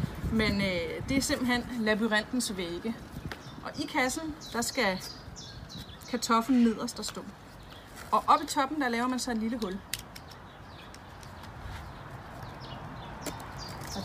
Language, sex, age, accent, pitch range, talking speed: Danish, female, 30-49, native, 210-260 Hz, 120 wpm